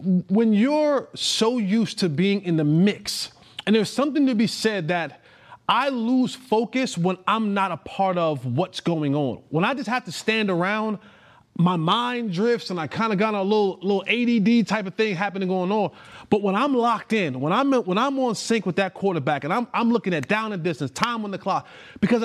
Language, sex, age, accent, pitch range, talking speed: English, male, 30-49, American, 180-235 Hz, 215 wpm